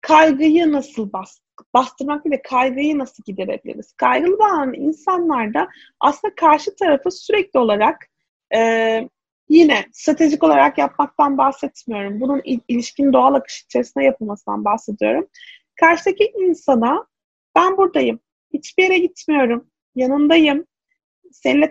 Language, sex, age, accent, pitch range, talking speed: Turkish, female, 30-49, native, 270-330 Hz, 105 wpm